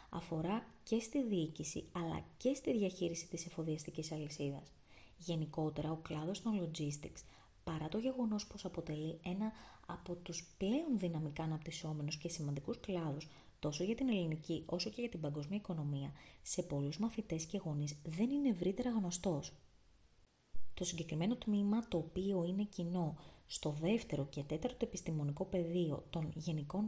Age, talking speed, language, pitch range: 20-39, 145 wpm, Greek, 155-205 Hz